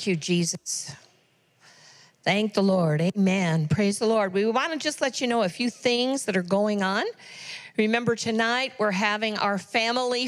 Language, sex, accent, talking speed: English, female, American, 170 wpm